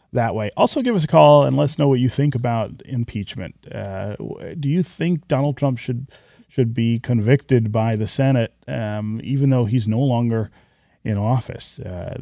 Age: 30-49